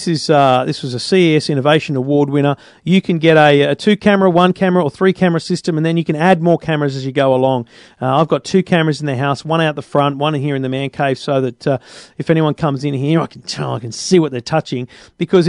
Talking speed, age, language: 255 wpm, 40-59, English